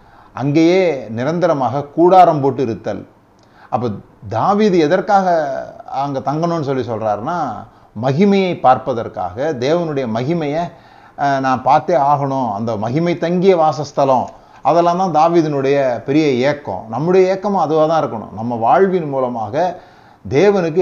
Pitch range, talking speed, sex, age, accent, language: 130-165 Hz, 100 wpm, male, 30-49, native, Tamil